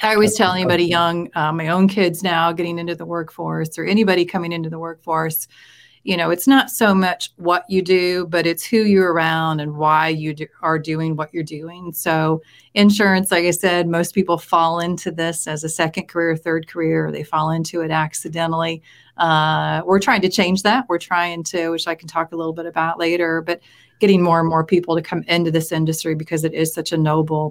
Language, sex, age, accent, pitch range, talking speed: English, female, 30-49, American, 160-185 Hz, 215 wpm